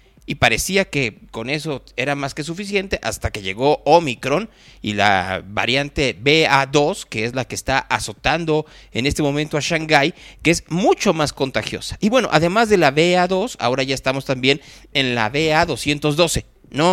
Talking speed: 165 wpm